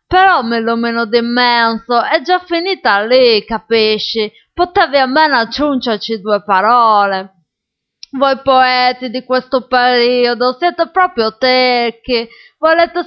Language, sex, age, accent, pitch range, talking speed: Italian, female, 20-39, native, 225-265 Hz, 110 wpm